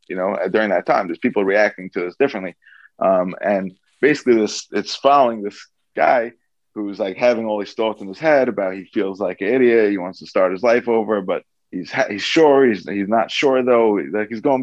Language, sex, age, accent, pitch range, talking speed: English, male, 20-39, American, 100-125 Hz, 225 wpm